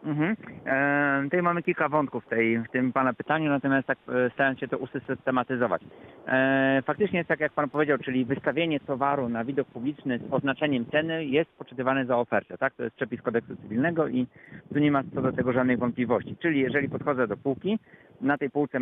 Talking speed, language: 190 wpm, Polish